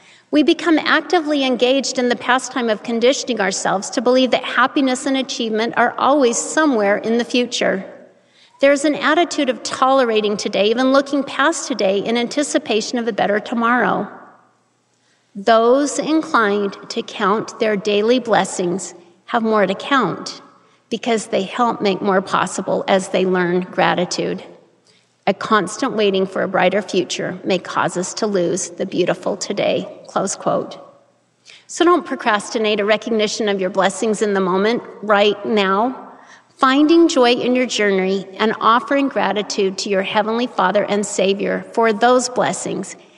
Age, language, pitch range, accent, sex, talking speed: 40-59, English, 195-260 Hz, American, female, 145 wpm